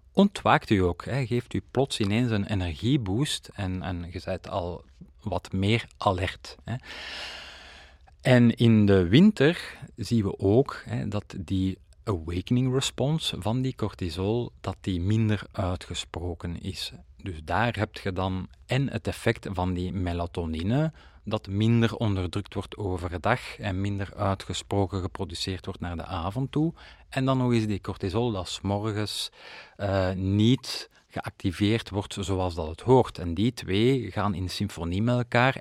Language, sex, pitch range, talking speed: Dutch, male, 90-115 Hz, 145 wpm